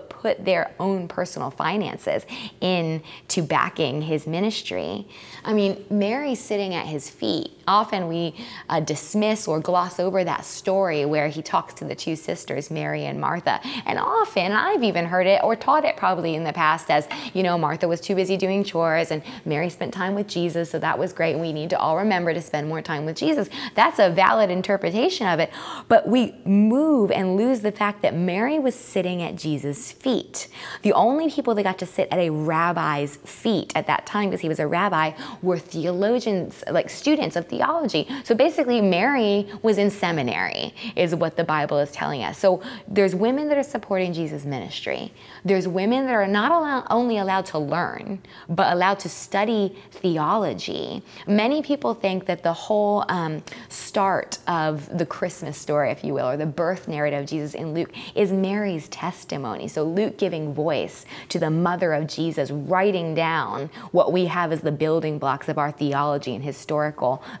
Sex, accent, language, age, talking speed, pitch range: female, American, English, 20-39, 185 wpm, 160-205 Hz